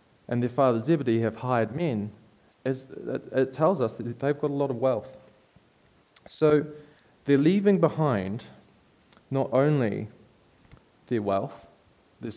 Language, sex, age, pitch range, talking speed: English, male, 20-39, 105-135 Hz, 130 wpm